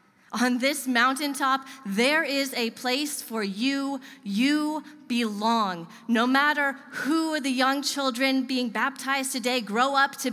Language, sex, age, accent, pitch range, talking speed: English, female, 20-39, American, 205-265 Hz, 135 wpm